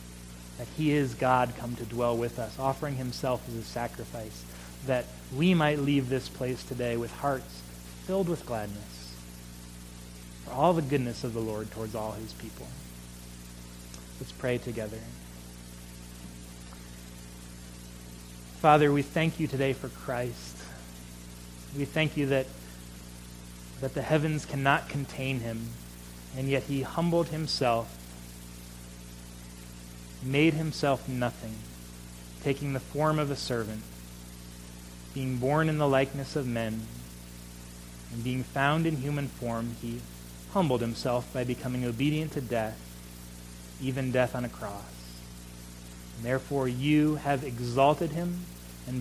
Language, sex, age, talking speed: English, male, 30-49, 125 wpm